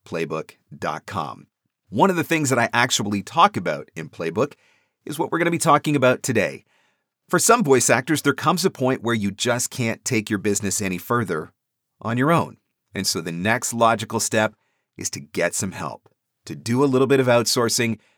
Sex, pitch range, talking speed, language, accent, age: male, 100-140 Hz, 195 wpm, English, American, 40-59